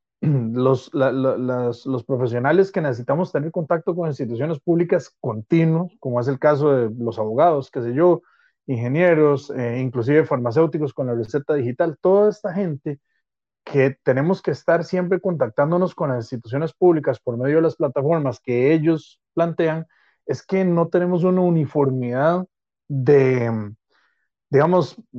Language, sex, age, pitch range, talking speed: Spanish, male, 30-49, 125-170 Hz, 145 wpm